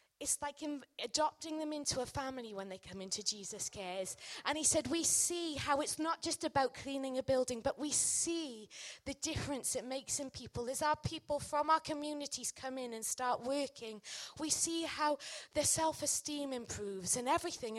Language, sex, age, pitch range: English, female, 20-39, 240-330 Hz